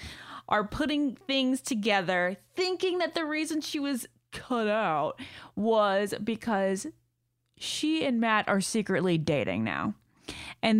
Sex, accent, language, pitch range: female, American, English, 185-280 Hz